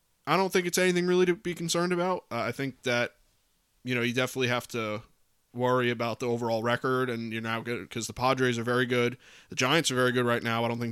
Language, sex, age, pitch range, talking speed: English, male, 20-39, 115-140 Hz, 245 wpm